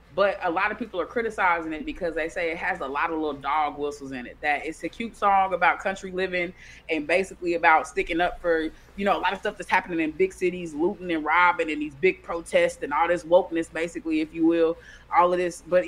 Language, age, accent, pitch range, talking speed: English, 20-39, American, 155-180 Hz, 245 wpm